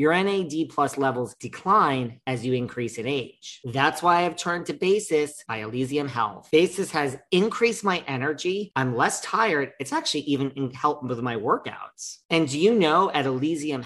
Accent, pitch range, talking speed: American, 130-175 Hz, 175 wpm